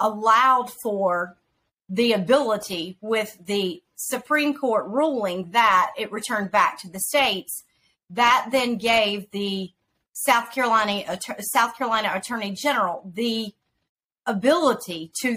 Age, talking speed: 40-59, 115 wpm